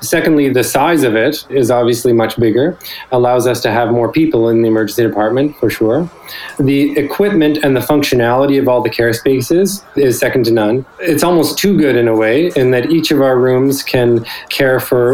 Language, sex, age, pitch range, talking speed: English, male, 20-39, 120-135 Hz, 200 wpm